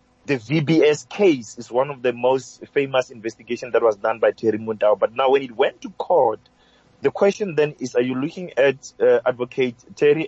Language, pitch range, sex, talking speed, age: English, 125-165 Hz, male, 200 wpm, 30-49